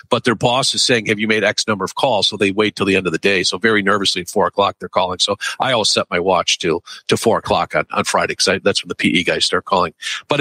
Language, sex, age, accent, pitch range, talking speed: English, male, 50-69, American, 110-150 Hz, 295 wpm